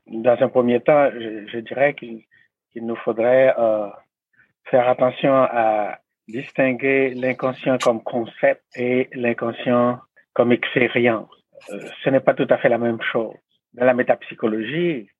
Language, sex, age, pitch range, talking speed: English, male, 60-79, 120-145 Hz, 140 wpm